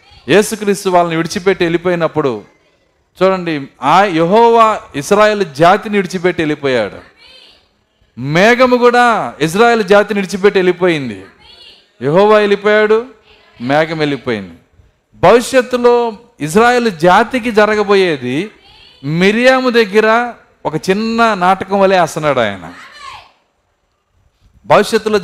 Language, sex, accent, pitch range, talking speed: Telugu, male, native, 160-215 Hz, 80 wpm